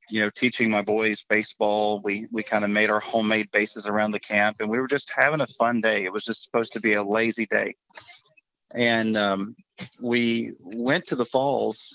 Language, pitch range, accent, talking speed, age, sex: English, 105-120 Hz, American, 205 wpm, 40-59, male